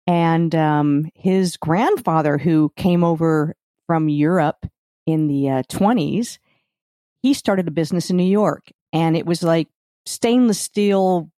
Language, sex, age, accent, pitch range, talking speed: English, female, 50-69, American, 160-200 Hz, 135 wpm